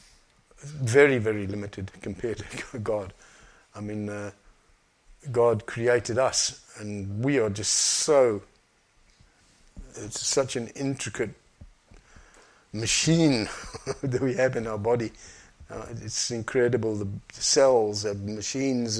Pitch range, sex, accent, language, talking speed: 105-130 Hz, male, British, English, 110 wpm